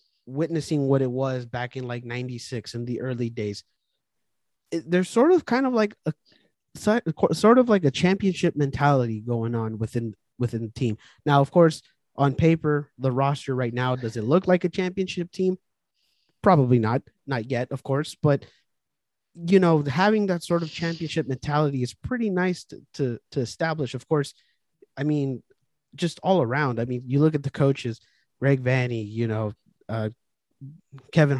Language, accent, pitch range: English, American, 125-150 Hz